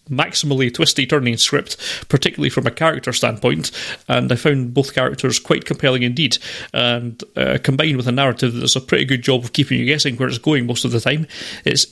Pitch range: 125-145 Hz